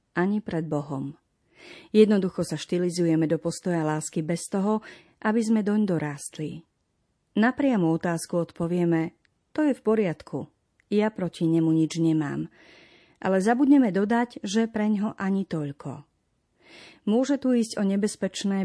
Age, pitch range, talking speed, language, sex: 40-59, 160-215 Hz, 130 wpm, Slovak, female